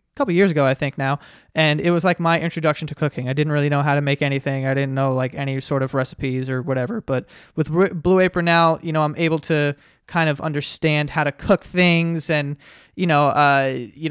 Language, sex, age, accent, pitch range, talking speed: English, male, 20-39, American, 140-160 Hz, 230 wpm